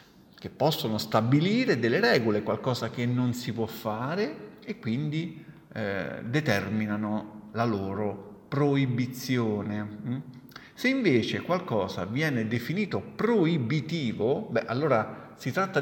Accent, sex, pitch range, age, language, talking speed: native, male, 110-165 Hz, 40-59, Italian, 110 wpm